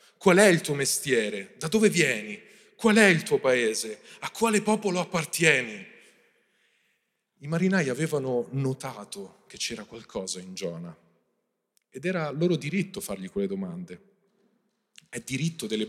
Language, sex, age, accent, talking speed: Italian, male, 40-59, native, 135 wpm